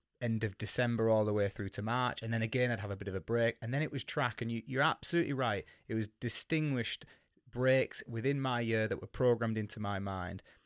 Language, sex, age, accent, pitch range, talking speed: English, male, 20-39, British, 105-125 Hz, 230 wpm